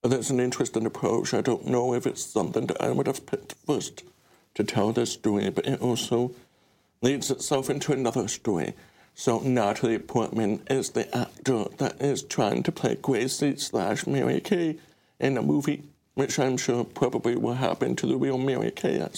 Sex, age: male, 60-79